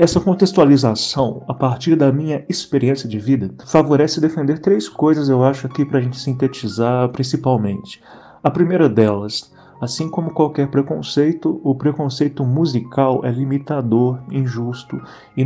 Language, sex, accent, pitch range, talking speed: Portuguese, male, Brazilian, 120-150 Hz, 135 wpm